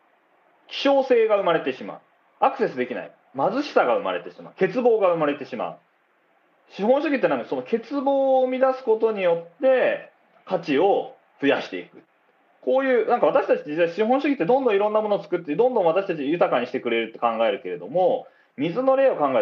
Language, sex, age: Japanese, male, 30-49